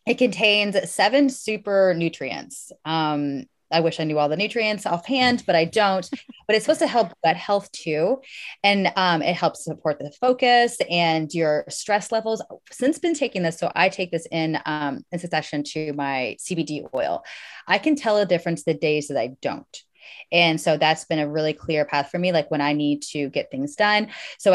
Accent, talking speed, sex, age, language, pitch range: American, 200 wpm, female, 20-39, English, 155-185 Hz